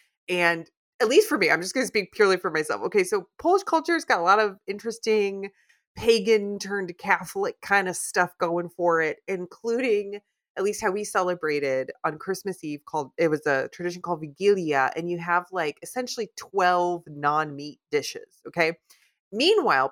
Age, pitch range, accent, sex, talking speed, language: 30-49, 155-250 Hz, American, female, 175 wpm, English